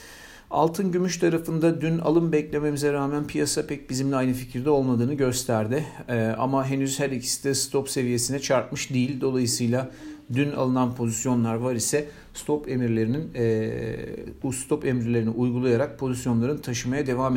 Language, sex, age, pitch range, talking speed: Turkish, male, 50-69, 115-135 Hz, 140 wpm